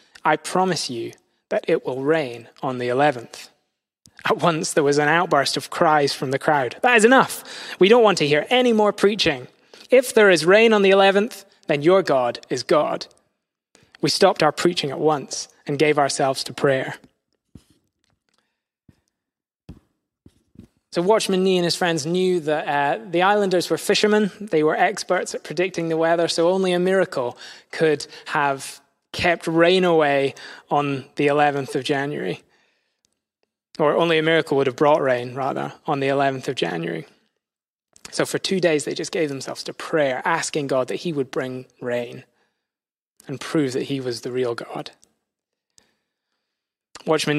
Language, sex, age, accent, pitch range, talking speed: English, male, 20-39, British, 140-185 Hz, 165 wpm